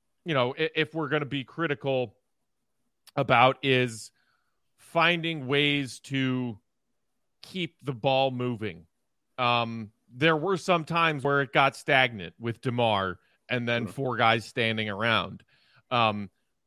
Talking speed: 125 wpm